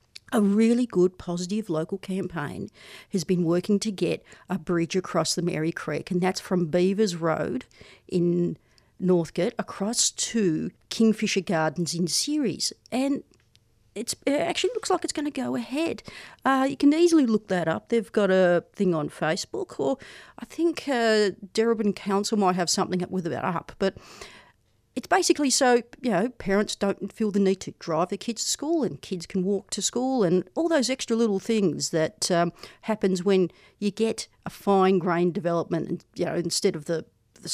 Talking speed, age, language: 180 wpm, 50-69, English